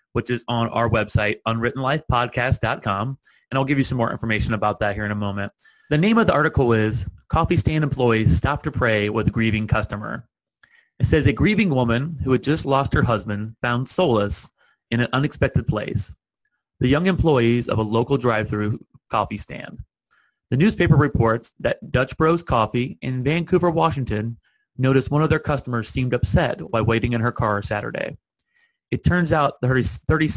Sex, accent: male, American